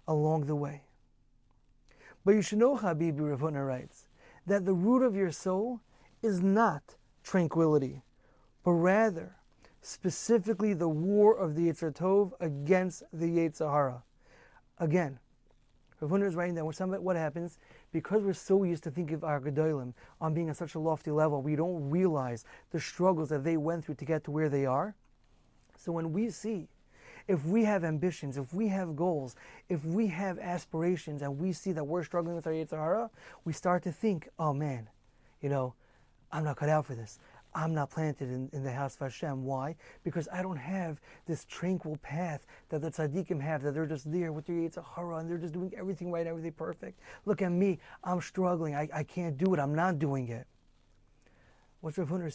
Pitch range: 145-185 Hz